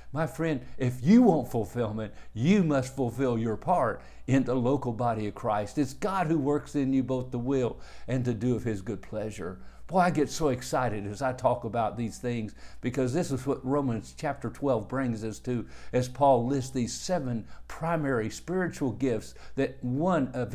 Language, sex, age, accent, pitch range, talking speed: English, male, 50-69, American, 120-150 Hz, 190 wpm